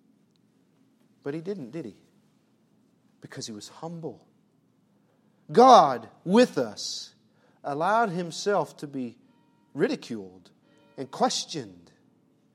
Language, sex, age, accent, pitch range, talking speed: English, male, 40-59, American, 180-255 Hz, 90 wpm